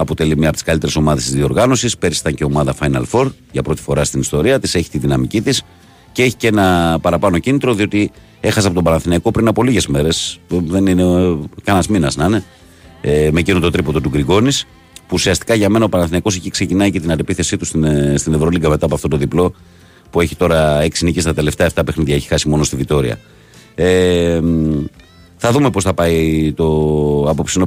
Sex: male